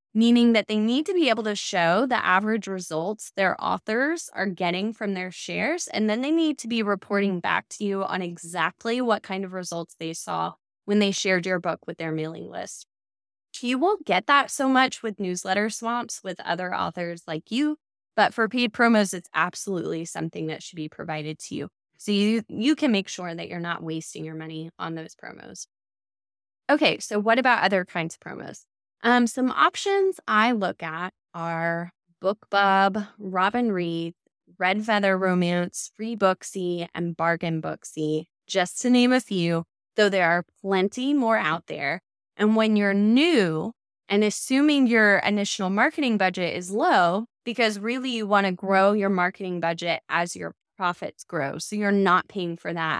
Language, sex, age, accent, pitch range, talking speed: English, female, 10-29, American, 170-225 Hz, 180 wpm